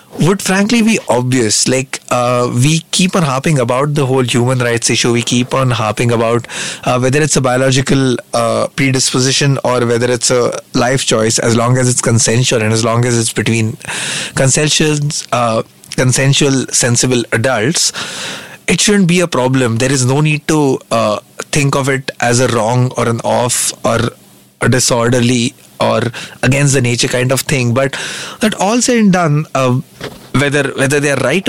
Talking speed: 175 wpm